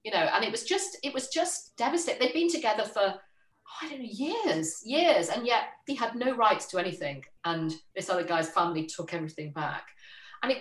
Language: English